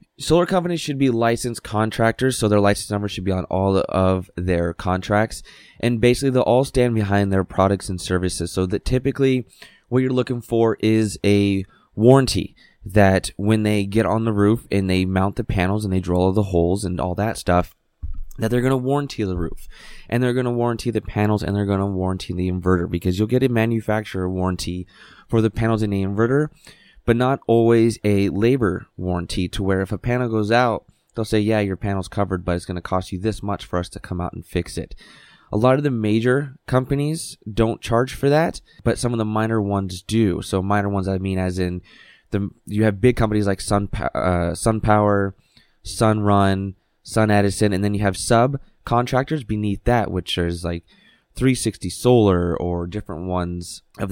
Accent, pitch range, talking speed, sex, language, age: American, 95-115 Hz, 200 wpm, male, English, 20-39